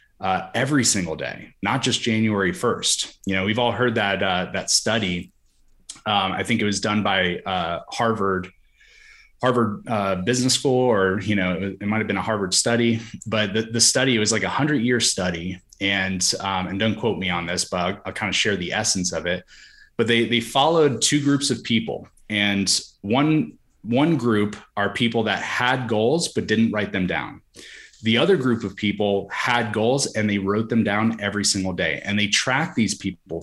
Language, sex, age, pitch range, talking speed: English, male, 20-39, 95-120 Hz, 195 wpm